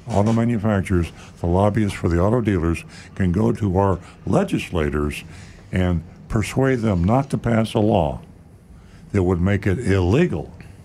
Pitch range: 85-100 Hz